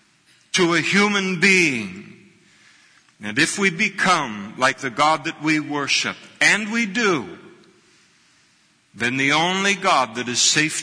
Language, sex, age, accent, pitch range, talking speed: English, male, 60-79, American, 105-140 Hz, 135 wpm